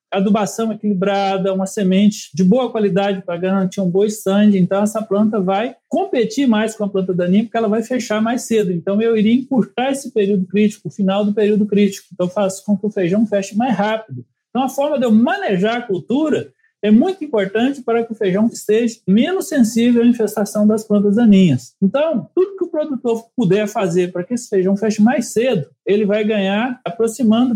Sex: male